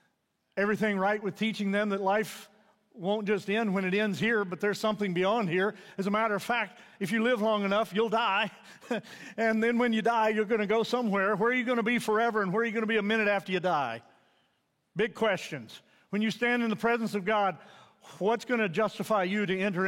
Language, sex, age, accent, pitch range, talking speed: English, male, 50-69, American, 200-230 Hz, 230 wpm